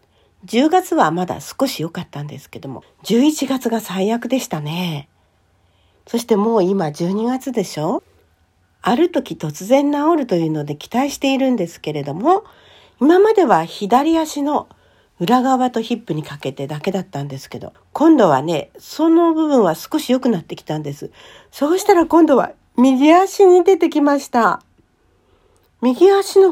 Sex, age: female, 50-69